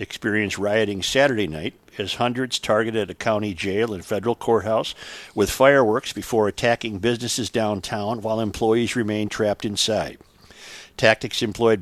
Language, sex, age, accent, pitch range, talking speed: English, male, 50-69, American, 105-120 Hz, 130 wpm